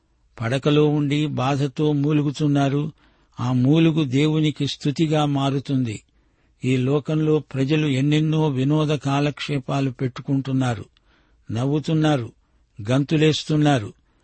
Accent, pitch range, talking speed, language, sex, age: native, 130-155 Hz, 75 wpm, Telugu, male, 60-79